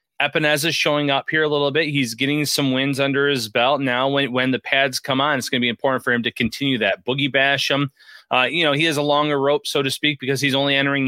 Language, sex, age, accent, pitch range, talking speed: English, male, 30-49, American, 120-145 Hz, 270 wpm